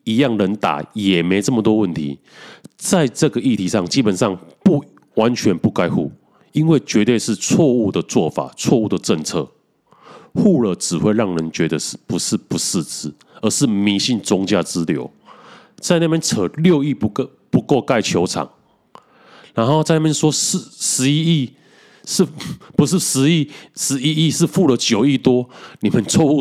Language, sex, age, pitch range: Chinese, male, 30-49, 100-155 Hz